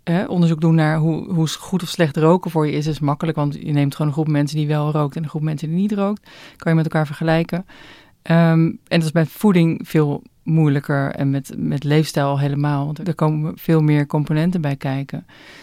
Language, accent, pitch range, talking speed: Dutch, Dutch, 150-175 Hz, 225 wpm